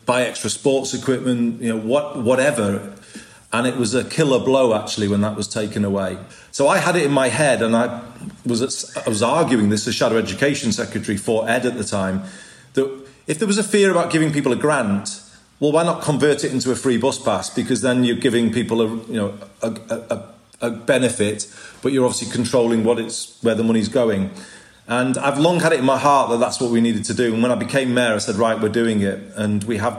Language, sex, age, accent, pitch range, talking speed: English, male, 30-49, British, 110-130 Hz, 230 wpm